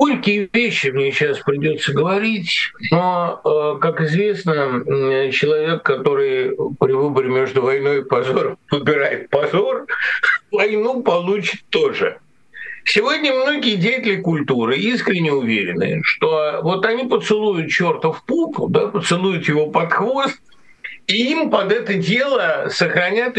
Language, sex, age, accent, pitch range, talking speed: Russian, male, 60-79, native, 175-245 Hz, 115 wpm